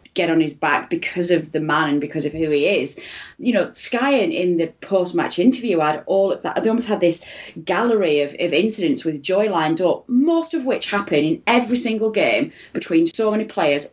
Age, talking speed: 30-49, 220 wpm